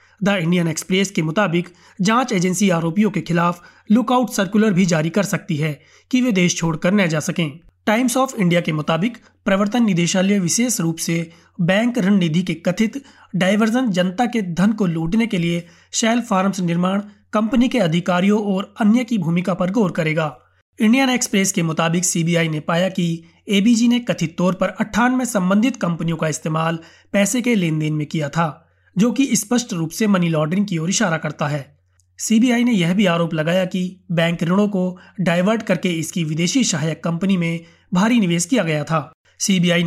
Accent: native